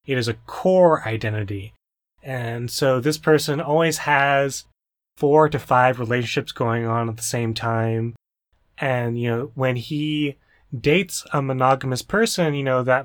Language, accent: English, American